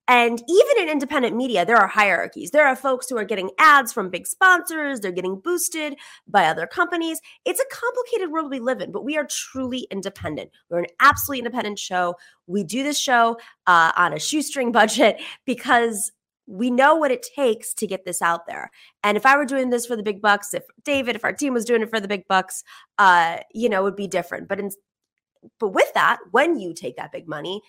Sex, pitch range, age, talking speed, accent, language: female, 195-270 Hz, 20-39, 220 wpm, American, English